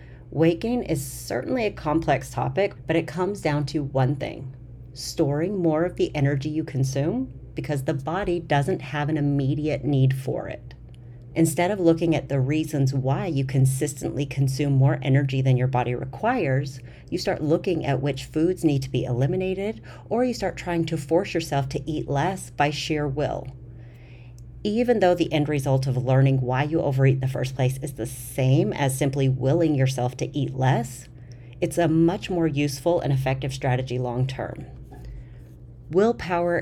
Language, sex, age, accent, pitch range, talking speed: English, female, 40-59, American, 130-160 Hz, 170 wpm